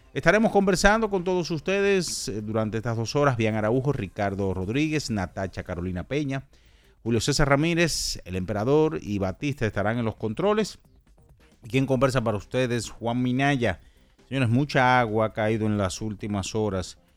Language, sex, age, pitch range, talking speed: Spanish, male, 40-59, 100-130 Hz, 145 wpm